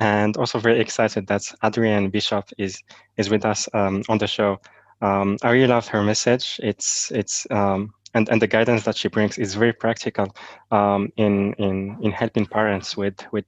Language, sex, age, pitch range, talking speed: English, male, 20-39, 100-110 Hz, 185 wpm